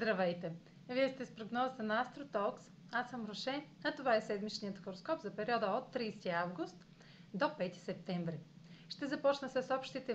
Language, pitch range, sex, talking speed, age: Bulgarian, 180-250 Hz, female, 160 wpm, 30-49